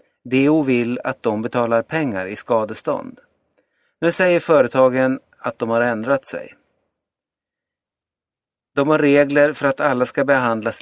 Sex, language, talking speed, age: male, Swedish, 135 wpm, 30-49